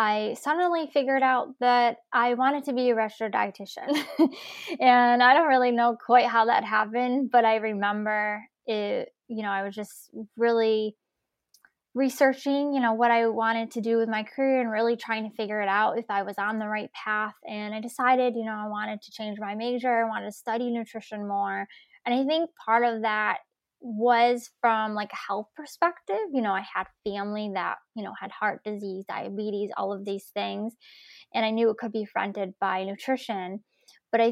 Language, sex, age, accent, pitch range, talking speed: English, female, 10-29, American, 210-245 Hz, 195 wpm